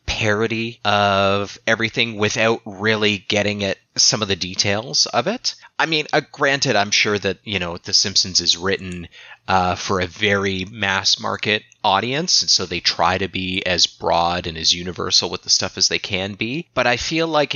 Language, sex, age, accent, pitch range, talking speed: English, male, 30-49, American, 90-110 Hz, 190 wpm